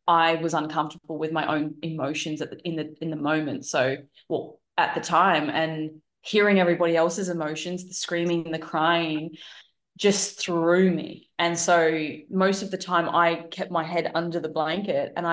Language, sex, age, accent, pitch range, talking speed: English, female, 20-39, Australian, 155-180 Hz, 180 wpm